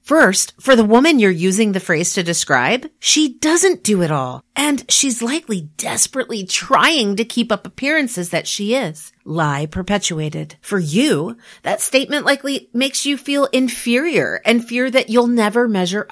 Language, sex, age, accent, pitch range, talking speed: English, female, 40-59, American, 165-230 Hz, 165 wpm